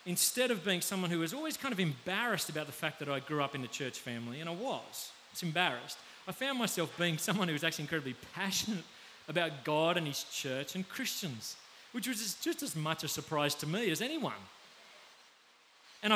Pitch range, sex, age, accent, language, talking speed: 155-225 Hz, male, 30-49, Australian, English, 205 wpm